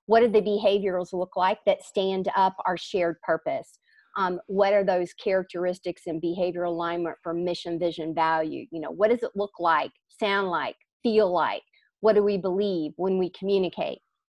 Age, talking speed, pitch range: 50-69, 175 wpm, 170-210 Hz